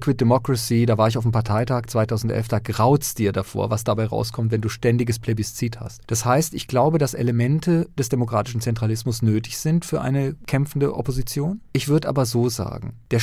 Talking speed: 190 wpm